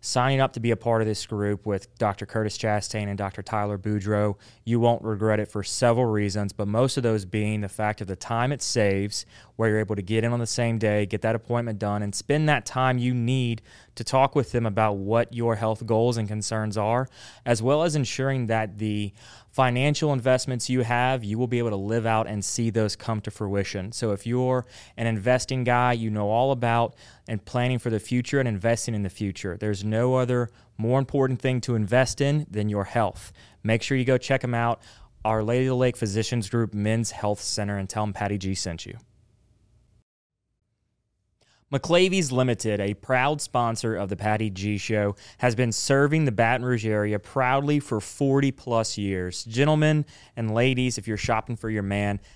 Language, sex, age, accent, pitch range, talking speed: English, male, 20-39, American, 105-125 Hz, 200 wpm